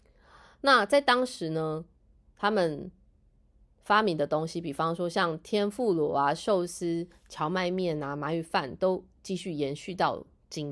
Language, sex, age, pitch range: Chinese, female, 20-39, 165-220 Hz